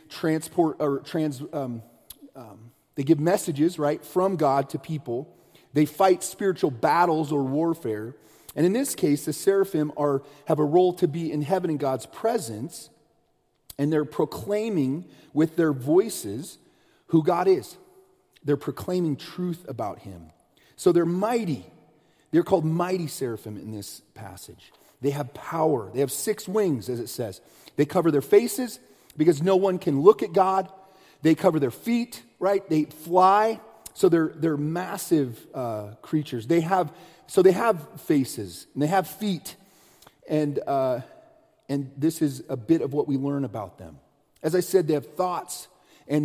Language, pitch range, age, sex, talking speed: English, 140-185 Hz, 40-59, male, 160 wpm